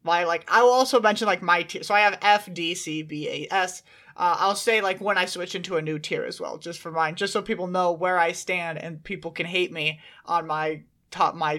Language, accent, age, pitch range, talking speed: English, American, 20-39, 165-205 Hz, 260 wpm